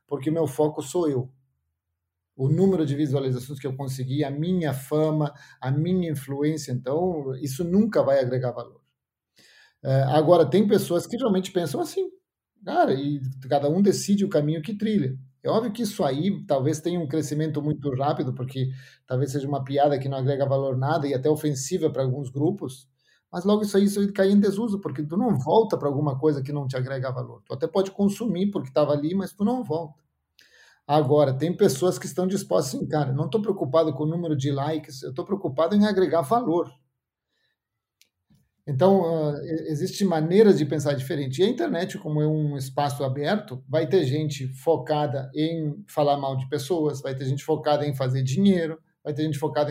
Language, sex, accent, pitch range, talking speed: Portuguese, male, Brazilian, 140-180 Hz, 190 wpm